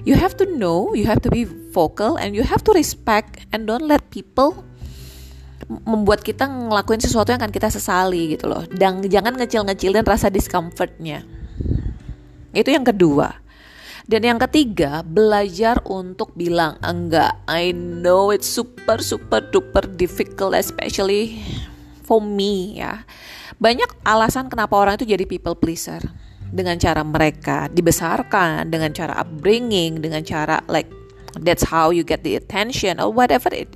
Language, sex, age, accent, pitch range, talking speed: Indonesian, female, 30-49, native, 145-215 Hz, 145 wpm